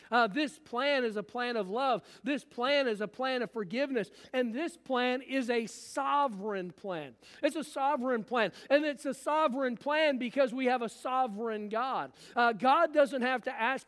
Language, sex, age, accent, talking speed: English, male, 50-69, American, 185 wpm